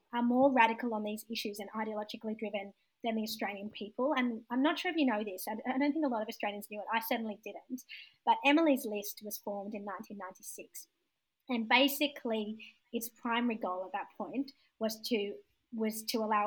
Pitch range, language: 210-255 Hz, English